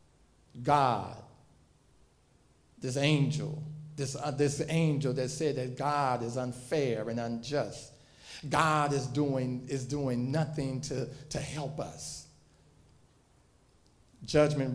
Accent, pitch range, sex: American, 125-160 Hz, male